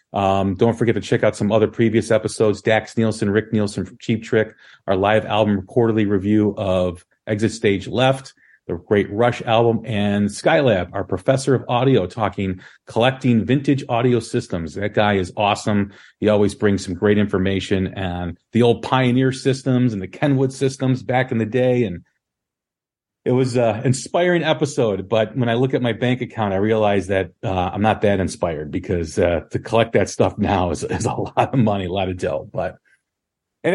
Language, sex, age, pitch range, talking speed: English, male, 40-59, 100-125 Hz, 185 wpm